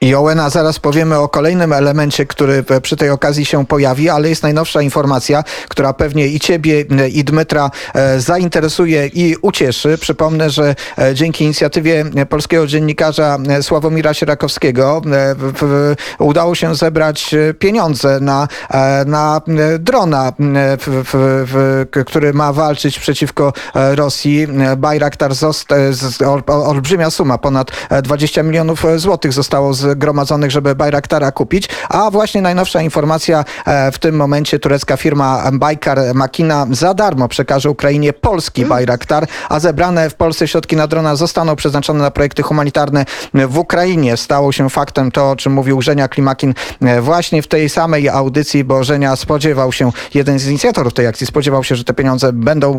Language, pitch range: Polish, 135-155 Hz